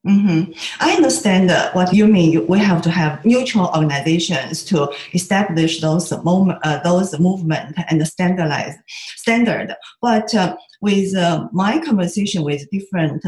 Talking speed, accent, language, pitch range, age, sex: 145 wpm, Chinese, English, 160-210 Hz, 30-49, female